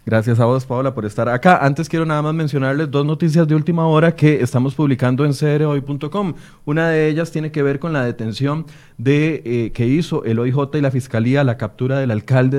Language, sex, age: Spanish, male, 30-49